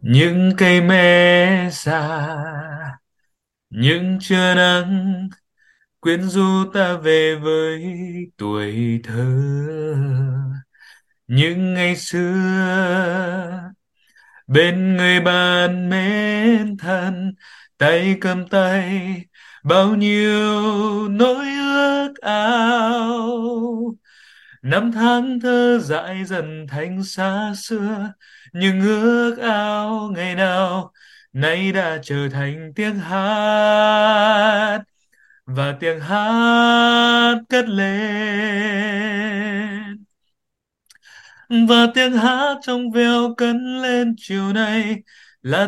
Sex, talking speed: male, 85 wpm